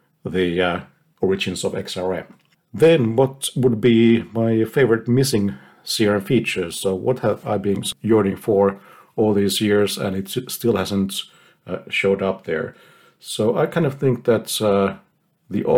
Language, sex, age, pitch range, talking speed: English, male, 50-69, 95-115 Hz, 150 wpm